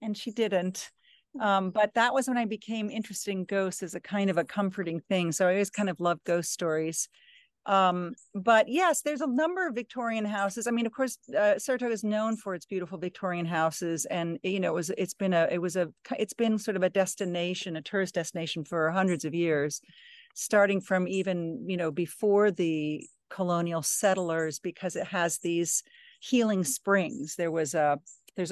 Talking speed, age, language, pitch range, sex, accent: 195 wpm, 50-69, English, 175-215 Hz, female, American